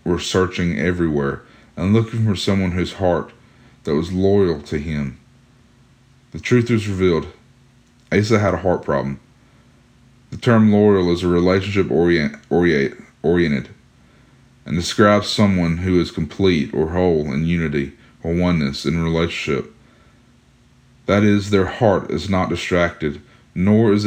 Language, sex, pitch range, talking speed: English, male, 85-115 Hz, 135 wpm